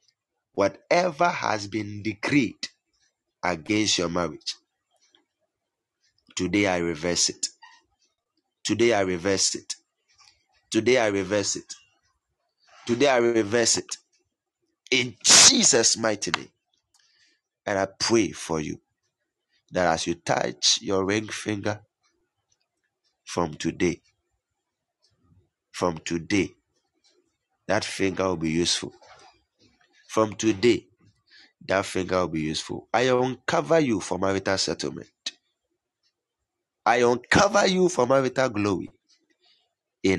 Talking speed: 100 wpm